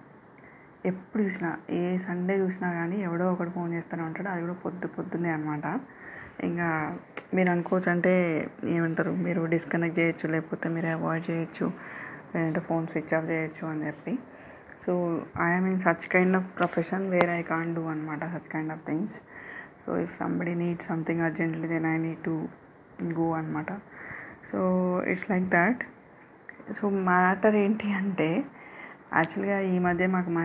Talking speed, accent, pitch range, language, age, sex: 150 wpm, native, 160-185 Hz, Telugu, 20-39, female